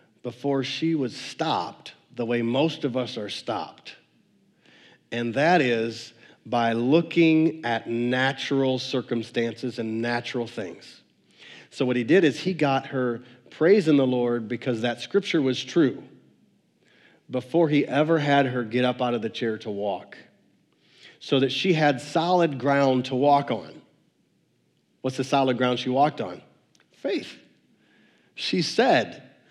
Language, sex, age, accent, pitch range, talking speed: English, male, 40-59, American, 125-165 Hz, 140 wpm